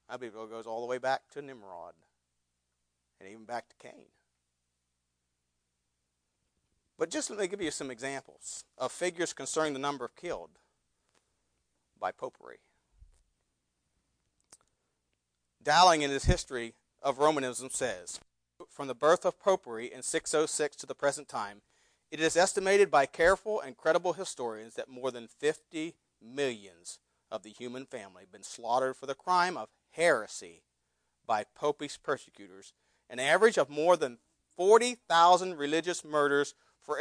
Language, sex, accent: English, male, American